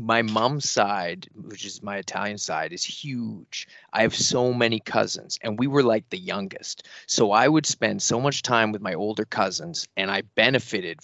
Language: English